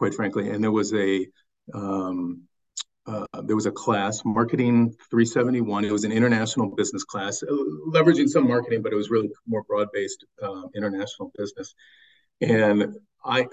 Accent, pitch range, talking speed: American, 100-120 Hz, 170 wpm